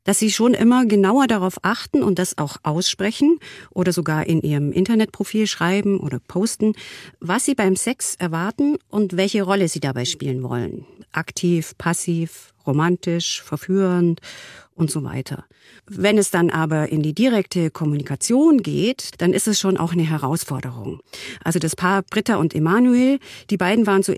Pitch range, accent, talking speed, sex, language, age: 155-205 Hz, German, 160 wpm, female, German, 40-59